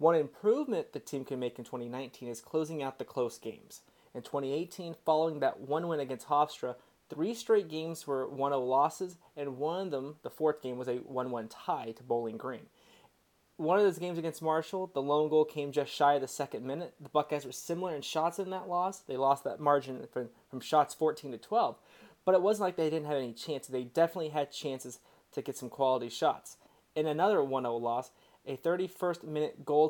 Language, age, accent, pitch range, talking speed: English, 20-39, American, 135-165 Hz, 205 wpm